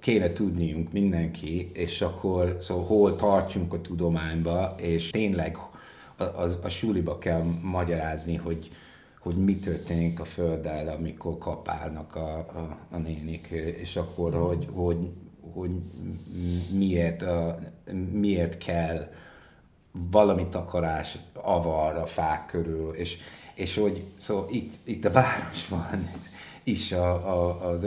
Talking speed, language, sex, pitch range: 130 wpm, Hungarian, male, 85-105 Hz